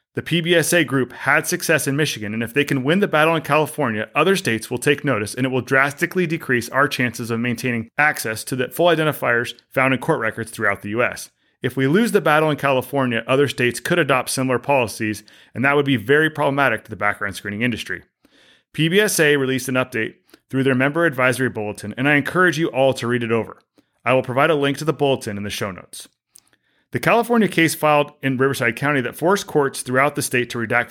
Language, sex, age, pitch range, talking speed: English, male, 30-49, 120-155 Hz, 215 wpm